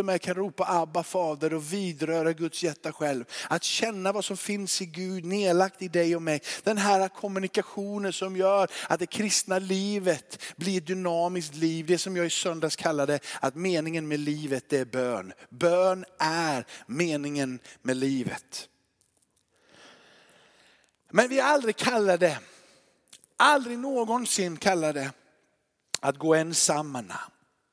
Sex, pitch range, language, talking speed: male, 150-190 Hz, Swedish, 140 wpm